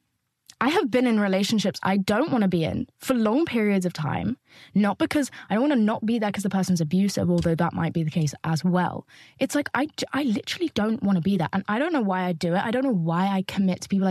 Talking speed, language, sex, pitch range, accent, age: 270 wpm, English, female, 185-230 Hz, British, 10-29